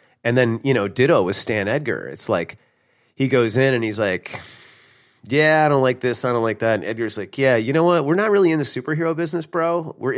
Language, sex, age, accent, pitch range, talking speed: English, male, 30-49, American, 100-135 Hz, 240 wpm